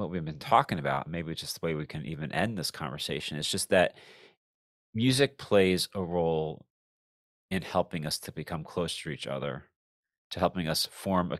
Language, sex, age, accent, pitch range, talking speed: English, male, 30-49, American, 80-105 Hz, 190 wpm